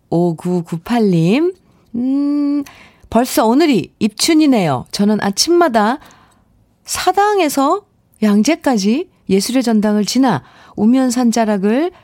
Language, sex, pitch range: Korean, female, 185-275 Hz